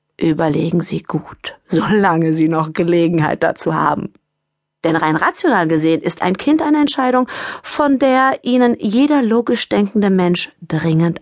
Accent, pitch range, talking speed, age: German, 165-275 Hz, 140 wpm, 40-59